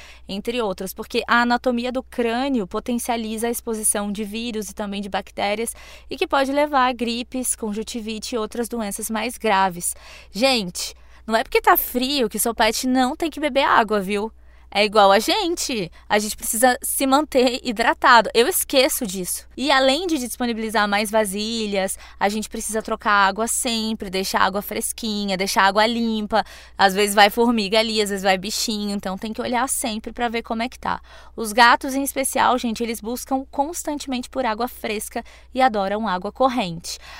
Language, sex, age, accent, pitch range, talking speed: Portuguese, female, 20-39, Brazilian, 210-260 Hz, 175 wpm